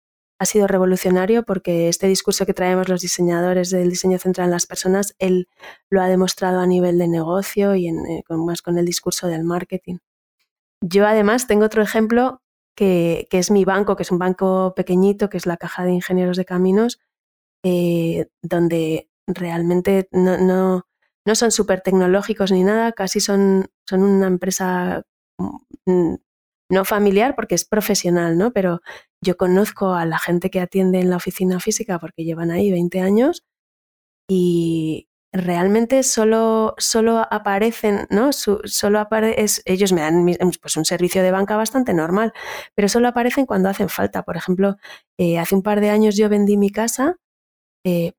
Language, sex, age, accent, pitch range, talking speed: Spanish, female, 20-39, Spanish, 175-205 Hz, 165 wpm